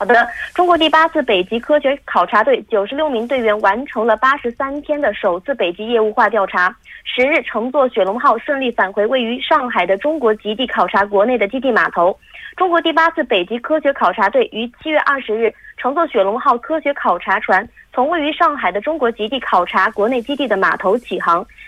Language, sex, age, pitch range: Korean, female, 20-39, 225-305 Hz